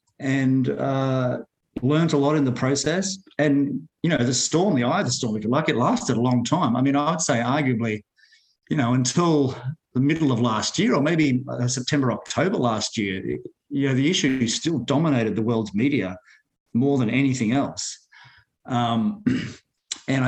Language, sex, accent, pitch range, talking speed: English, male, Australian, 120-145 Hz, 180 wpm